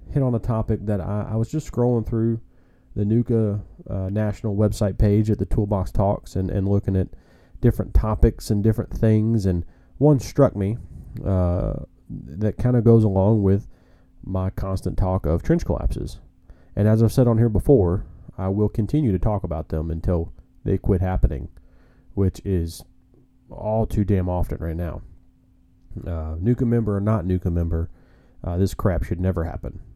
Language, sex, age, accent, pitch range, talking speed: English, male, 30-49, American, 90-115 Hz, 170 wpm